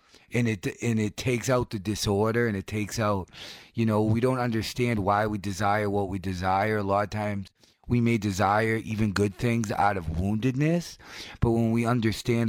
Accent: American